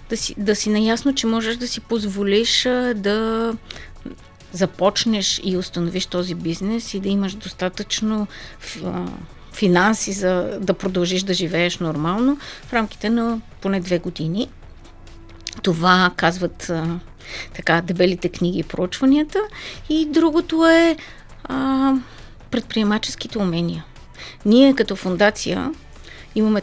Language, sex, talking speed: Bulgarian, female, 110 wpm